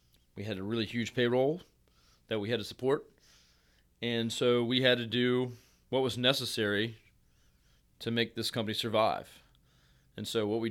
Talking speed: 165 wpm